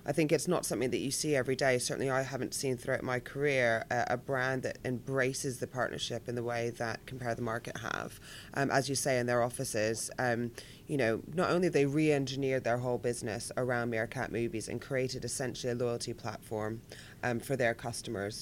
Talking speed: 205 wpm